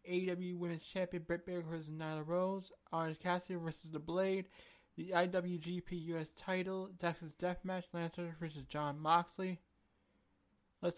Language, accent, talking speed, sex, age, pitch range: English, American, 135 wpm, male, 20-39, 165-185 Hz